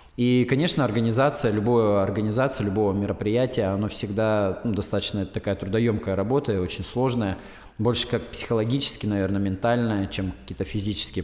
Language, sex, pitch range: Russian, male, 105-125 Hz